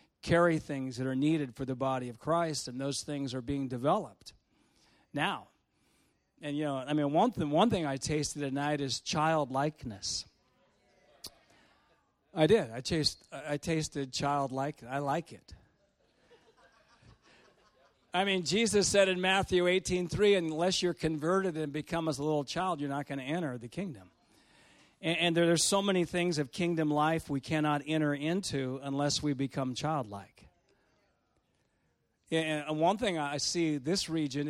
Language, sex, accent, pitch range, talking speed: English, male, American, 135-170 Hz, 160 wpm